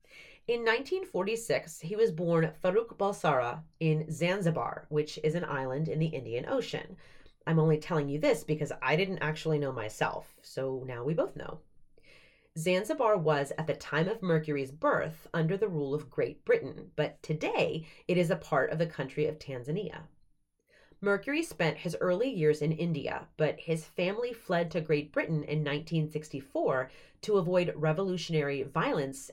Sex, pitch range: female, 150-180 Hz